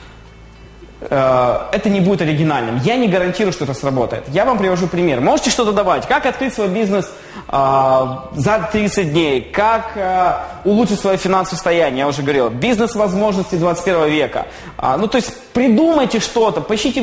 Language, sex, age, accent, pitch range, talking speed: Russian, male, 20-39, native, 155-225 Hz, 160 wpm